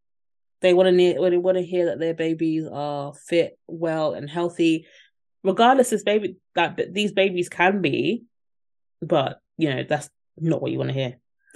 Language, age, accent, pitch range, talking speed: English, 20-39, British, 155-195 Hz, 175 wpm